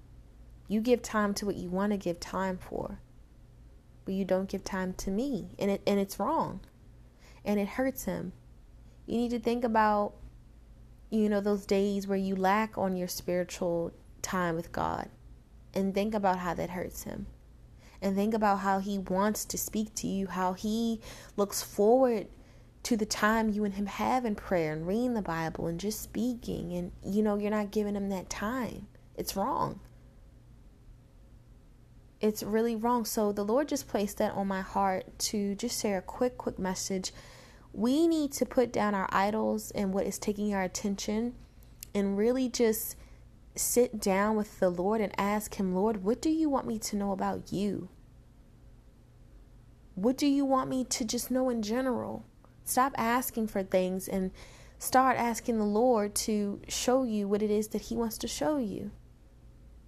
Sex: female